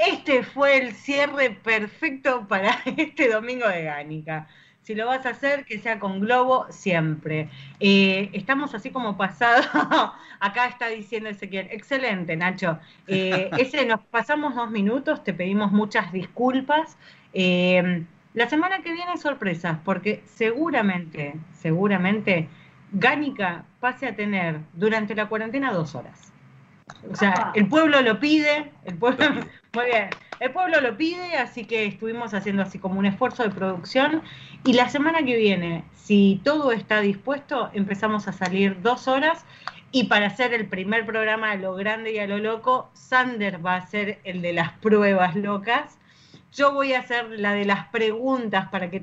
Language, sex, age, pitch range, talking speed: Spanish, female, 40-59, 190-255 Hz, 160 wpm